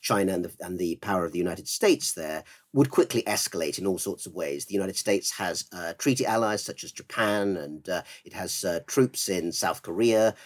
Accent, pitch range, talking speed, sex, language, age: British, 95-125 Hz, 210 wpm, male, English, 50-69